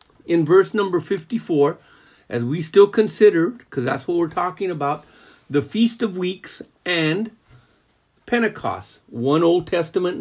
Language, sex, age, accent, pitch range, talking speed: English, male, 50-69, American, 135-185 Hz, 135 wpm